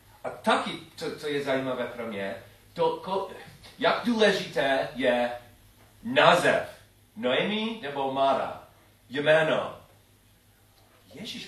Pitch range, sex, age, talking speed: 110-140 Hz, male, 40-59, 95 wpm